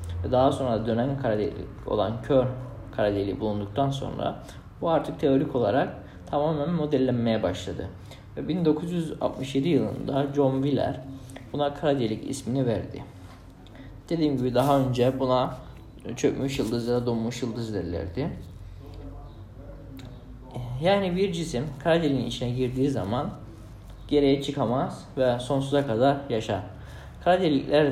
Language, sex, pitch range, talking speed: Turkish, male, 105-140 Hz, 105 wpm